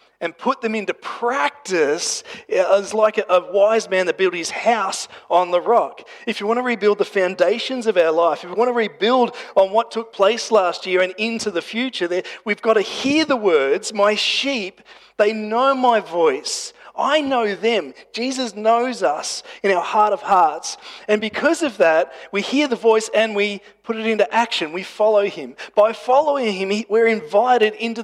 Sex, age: male, 30-49